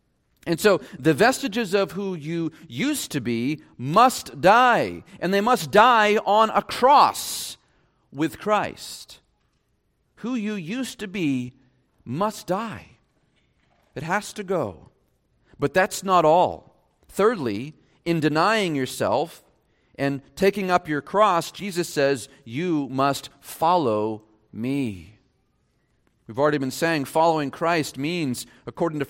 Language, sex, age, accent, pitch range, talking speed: English, male, 40-59, American, 145-205 Hz, 125 wpm